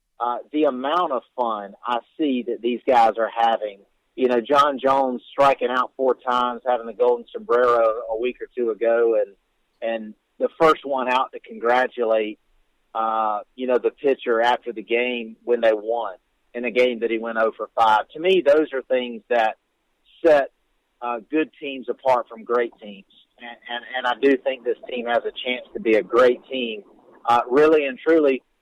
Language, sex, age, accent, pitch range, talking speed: English, male, 50-69, American, 115-150 Hz, 190 wpm